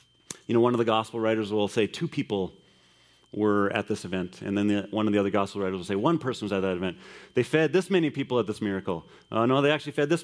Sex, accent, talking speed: male, American, 270 wpm